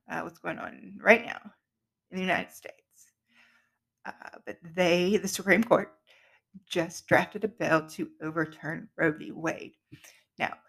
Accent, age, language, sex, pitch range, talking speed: American, 30-49, English, female, 165-210 Hz, 145 wpm